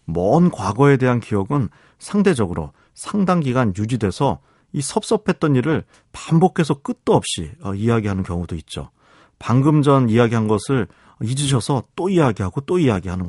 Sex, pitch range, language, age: male, 105-165 Hz, Korean, 40-59